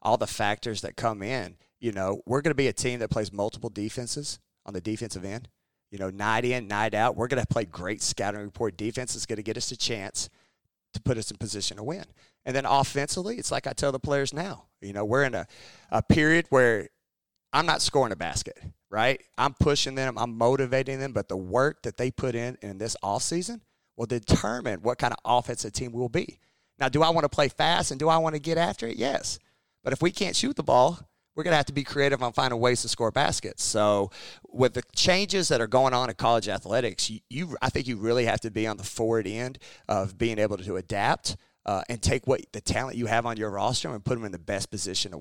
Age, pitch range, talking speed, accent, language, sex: 30-49, 105-135 Hz, 245 wpm, American, English, male